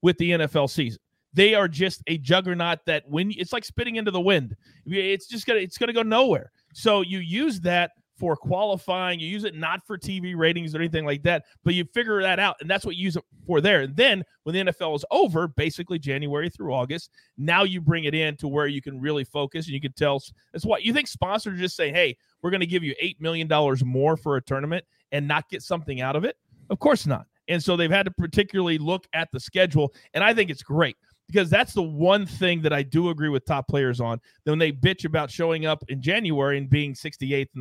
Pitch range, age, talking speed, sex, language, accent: 145-185 Hz, 30-49, 245 wpm, male, English, American